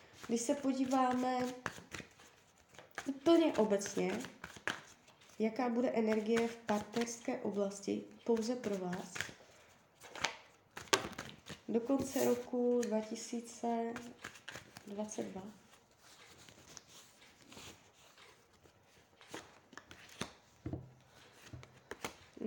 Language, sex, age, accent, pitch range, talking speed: Czech, female, 20-39, native, 205-235 Hz, 50 wpm